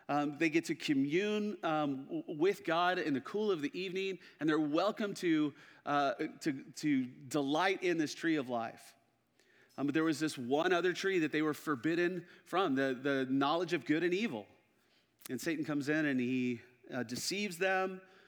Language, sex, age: English, male, 40-59